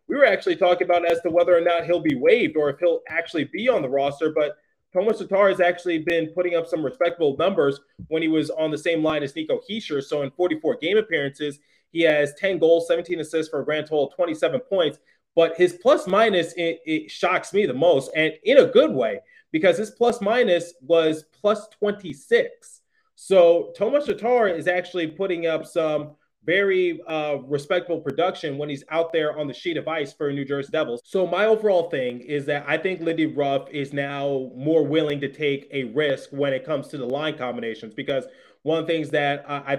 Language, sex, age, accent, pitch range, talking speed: English, male, 30-49, American, 145-180 Hz, 210 wpm